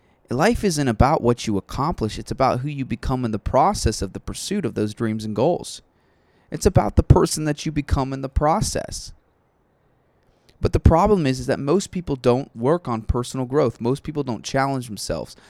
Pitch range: 115-155 Hz